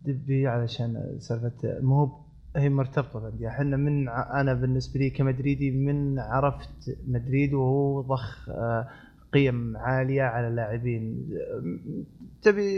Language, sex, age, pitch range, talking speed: Arabic, male, 20-39, 130-170 Hz, 115 wpm